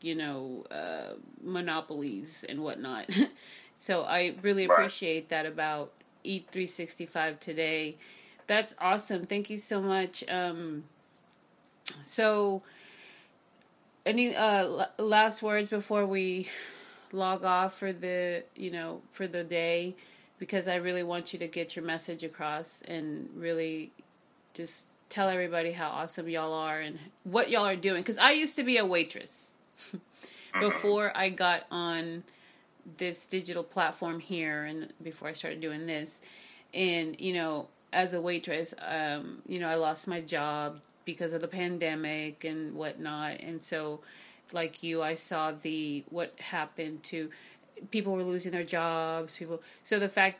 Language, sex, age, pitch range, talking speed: English, female, 30-49, 160-190 Hz, 145 wpm